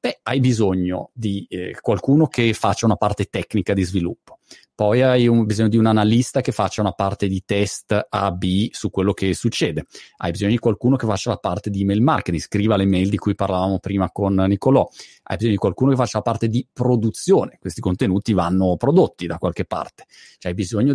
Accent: native